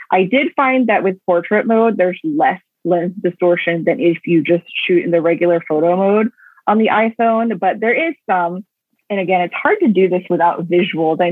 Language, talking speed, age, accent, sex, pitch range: English, 200 wpm, 30-49, American, female, 170-215 Hz